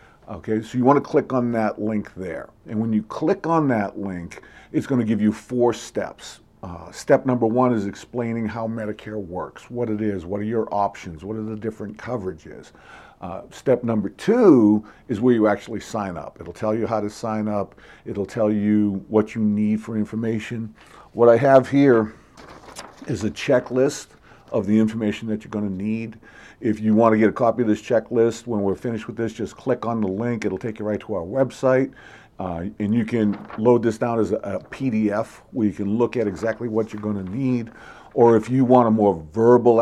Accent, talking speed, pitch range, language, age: American, 210 wpm, 105-120 Hz, English, 50-69